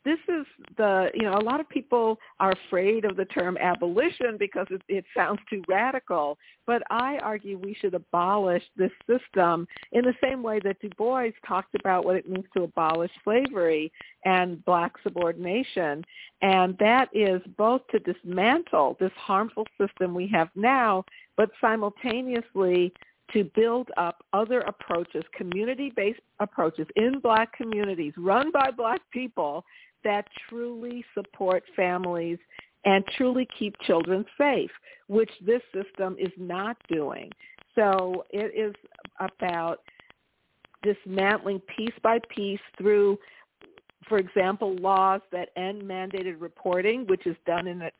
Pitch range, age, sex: 180-225 Hz, 50-69, female